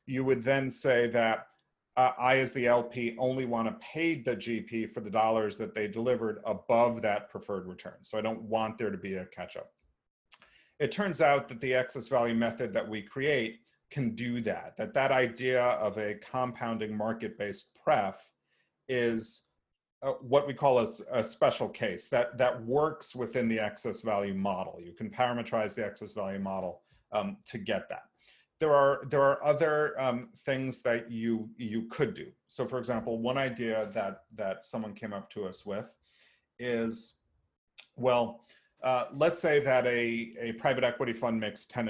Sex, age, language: male, 40-59, English